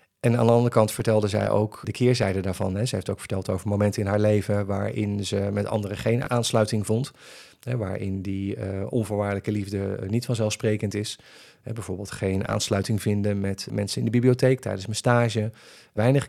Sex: male